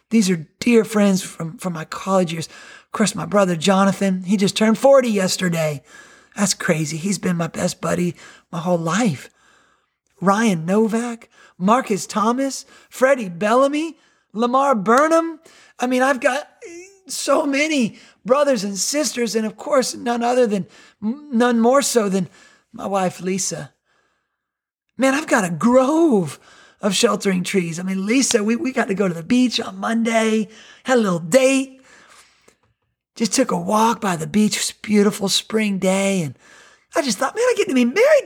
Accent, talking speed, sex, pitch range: American, 165 wpm, male, 190-260 Hz